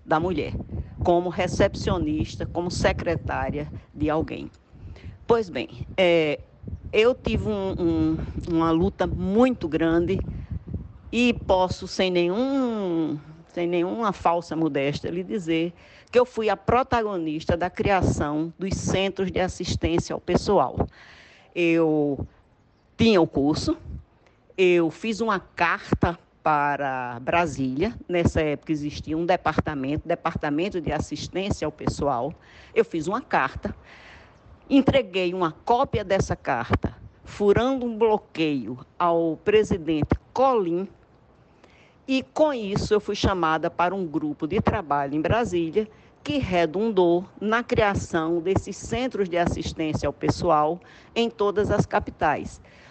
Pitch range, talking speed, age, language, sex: 155-205 Hz, 115 wpm, 50-69, Portuguese, female